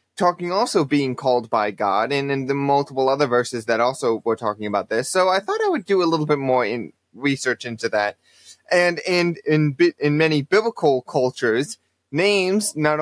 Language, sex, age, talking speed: English, male, 20-39, 190 wpm